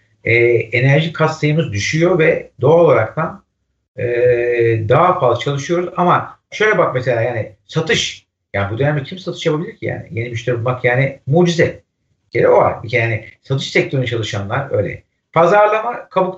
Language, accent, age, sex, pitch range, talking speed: Turkish, native, 60-79, male, 120-170 Hz, 150 wpm